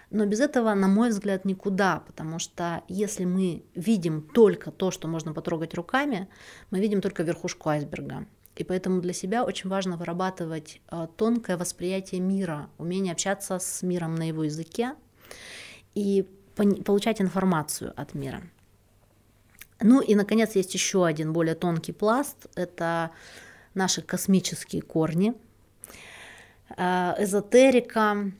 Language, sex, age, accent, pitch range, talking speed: Russian, female, 30-49, native, 165-195 Hz, 125 wpm